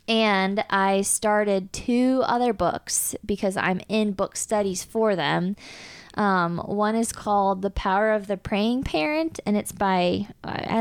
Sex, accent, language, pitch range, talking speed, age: female, American, English, 190-225 Hz, 150 wpm, 20-39